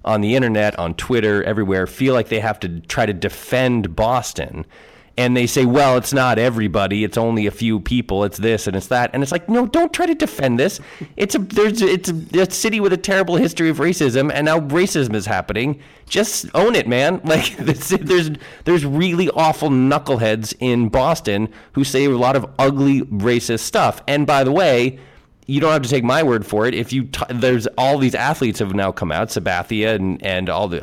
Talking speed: 210 wpm